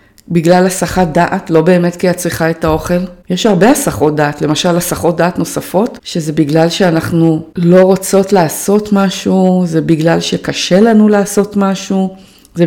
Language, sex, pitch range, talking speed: Hebrew, female, 165-190 Hz, 150 wpm